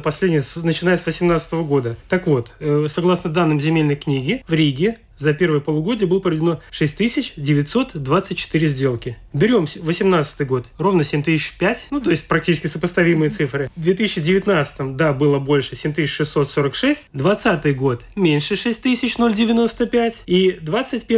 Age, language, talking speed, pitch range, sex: 30-49, Russian, 115 wpm, 150-195 Hz, male